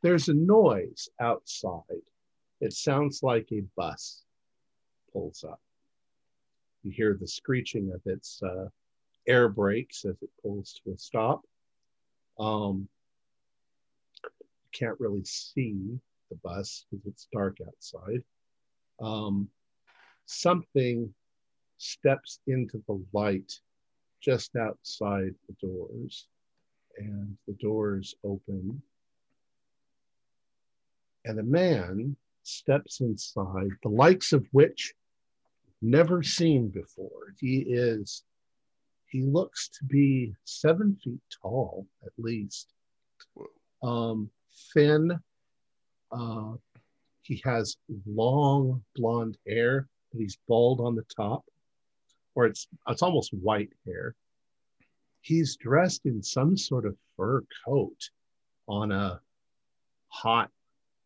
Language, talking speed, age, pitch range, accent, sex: English, 100 wpm, 50-69, 100-140 Hz, American, male